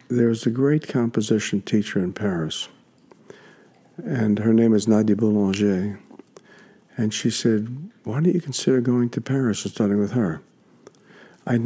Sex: male